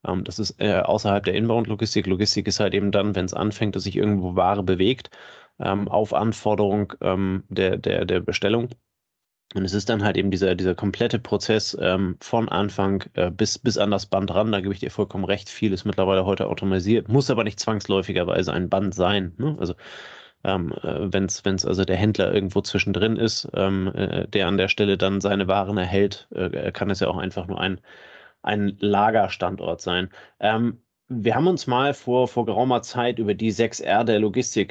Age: 30-49